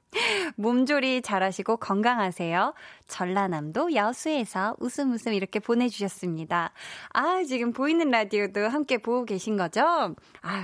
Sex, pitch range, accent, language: female, 195-285 Hz, native, Korean